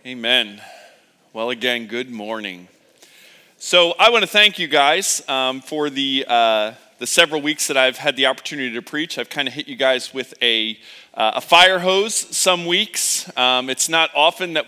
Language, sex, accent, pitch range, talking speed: English, male, American, 140-190 Hz, 185 wpm